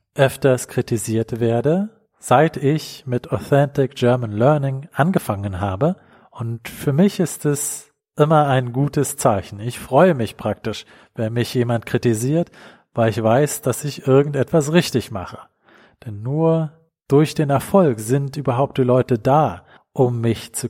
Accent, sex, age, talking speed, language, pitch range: German, male, 40-59, 140 wpm, English, 115-145 Hz